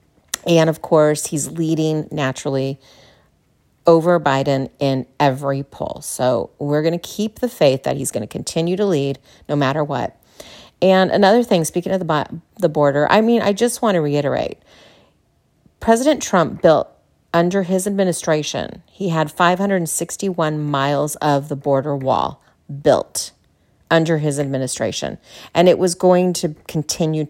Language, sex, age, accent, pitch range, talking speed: English, female, 40-59, American, 140-175 Hz, 145 wpm